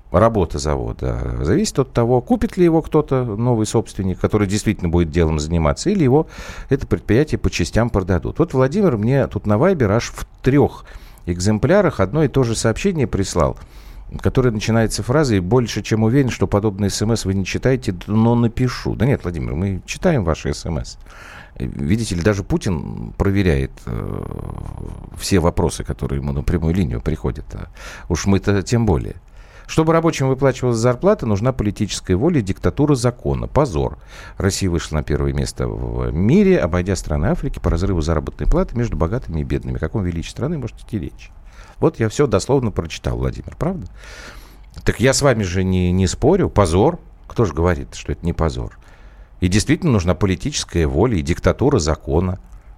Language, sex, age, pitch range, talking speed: Russian, male, 50-69, 85-120 Hz, 165 wpm